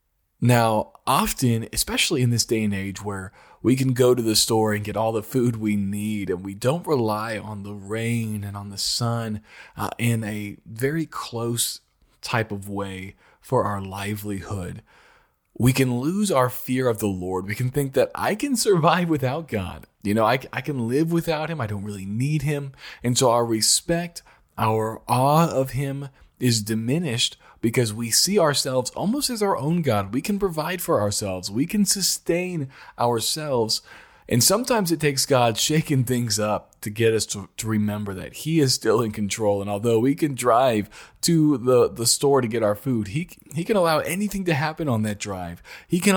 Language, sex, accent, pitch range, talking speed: English, male, American, 105-150 Hz, 190 wpm